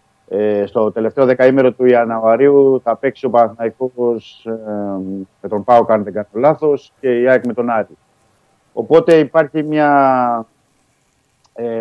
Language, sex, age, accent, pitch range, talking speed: Greek, male, 50-69, native, 110-130 Hz, 135 wpm